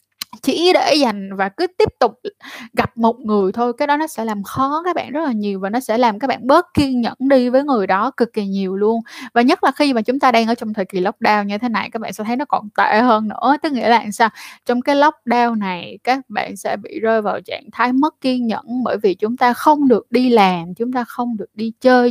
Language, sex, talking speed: Vietnamese, female, 265 wpm